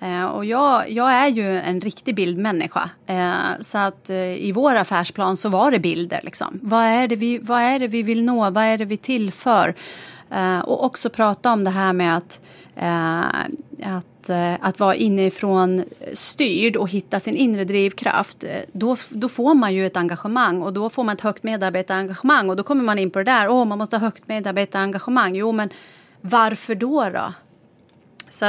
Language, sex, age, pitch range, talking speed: English, female, 30-49, 185-235 Hz, 180 wpm